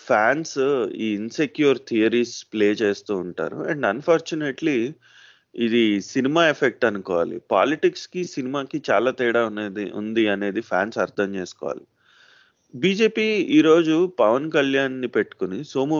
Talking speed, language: 115 wpm, Telugu